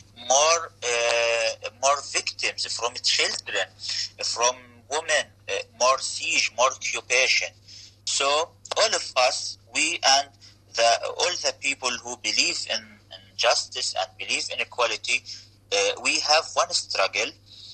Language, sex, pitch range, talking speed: English, male, 100-125 Hz, 125 wpm